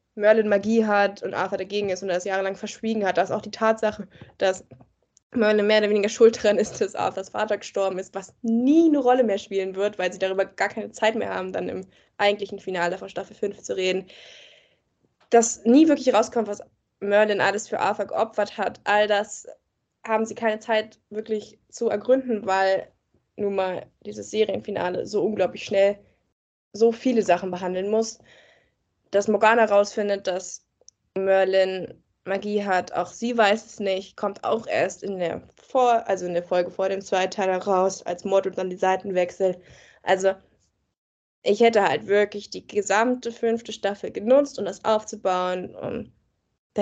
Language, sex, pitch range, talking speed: German, female, 185-215 Hz, 175 wpm